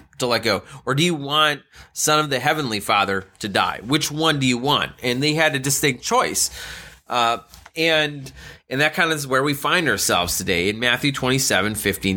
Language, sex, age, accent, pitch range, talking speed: English, male, 30-49, American, 115-160 Hz, 200 wpm